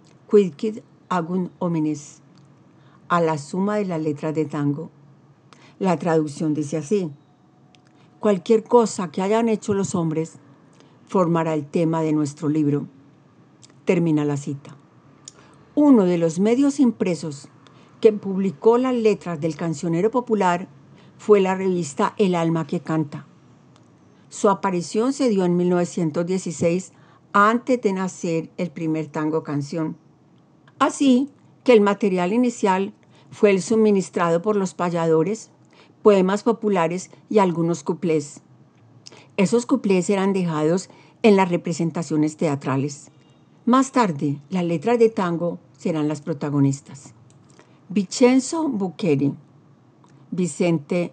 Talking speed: 115 wpm